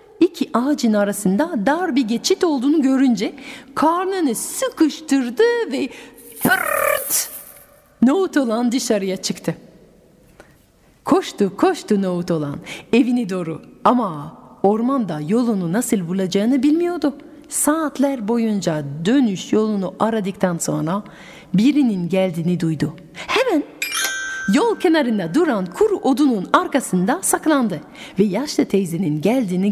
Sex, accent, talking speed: female, native, 100 wpm